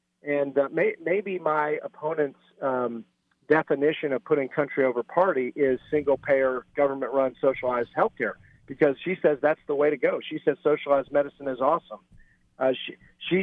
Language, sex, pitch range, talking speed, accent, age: English, male, 135-165 Hz, 170 wpm, American, 50-69